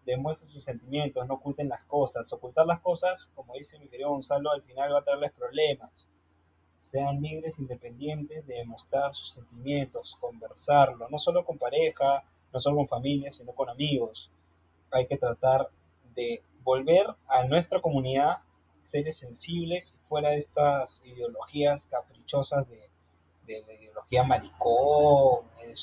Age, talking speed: 30-49, 140 wpm